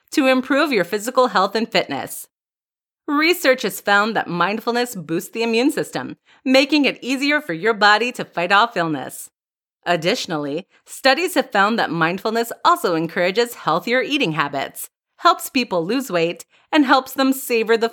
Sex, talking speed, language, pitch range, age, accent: female, 155 wpm, English, 180-265 Hz, 30-49, American